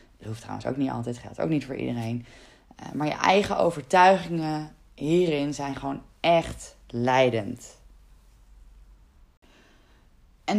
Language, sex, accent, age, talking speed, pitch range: Dutch, female, Dutch, 20-39, 120 wpm, 135-205 Hz